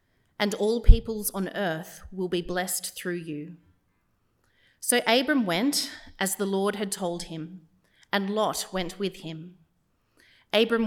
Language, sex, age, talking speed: English, female, 30-49, 140 wpm